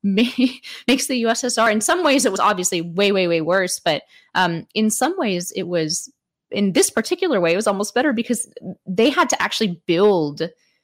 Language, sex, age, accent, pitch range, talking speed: English, female, 20-39, American, 175-225 Hz, 190 wpm